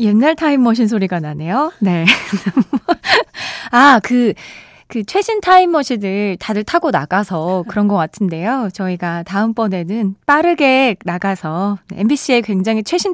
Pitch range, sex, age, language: 195-285 Hz, female, 20-39, Korean